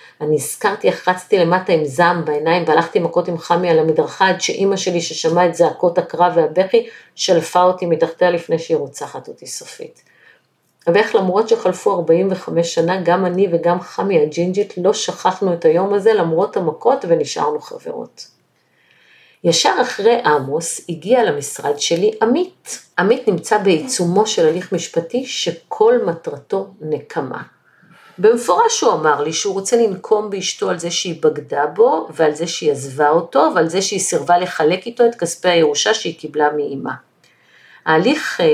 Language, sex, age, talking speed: Hebrew, female, 50-69, 150 wpm